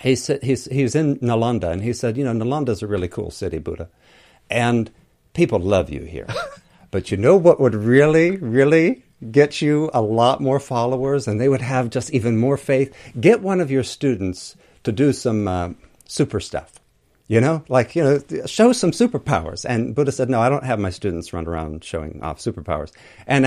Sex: male